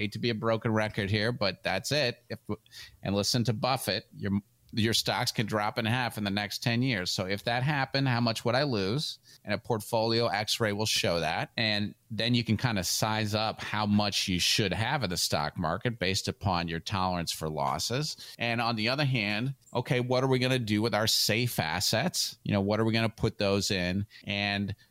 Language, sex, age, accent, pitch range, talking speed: English, male, 30-49, American, 100-120 Hz, 220 wpm